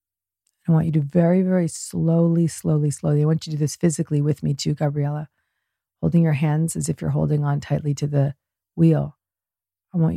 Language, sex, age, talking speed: English, female, 40-59, 200 wpm